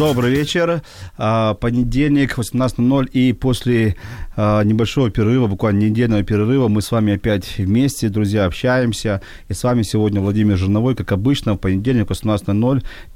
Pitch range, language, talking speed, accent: 105-125 Hz, Ukrainian, 135 wpm, native